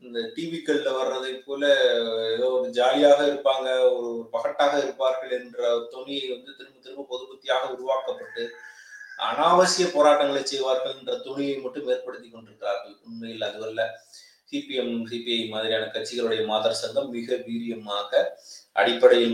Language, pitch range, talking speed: Tamil, 125-190 Hz, 115 wpm